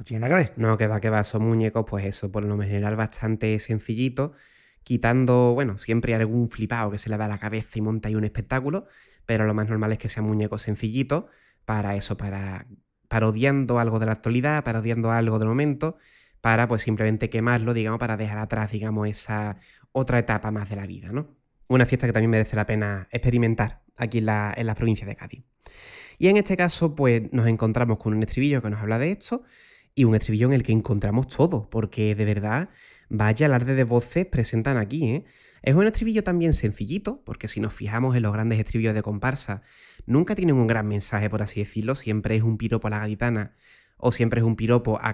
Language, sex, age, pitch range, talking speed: Spanish, male, 20-39, 110-125 Hz, 205 wpm